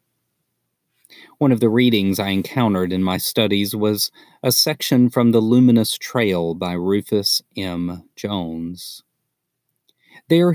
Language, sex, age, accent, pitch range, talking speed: English, male, 40-59, American, 90-125 Hz, 120 wpm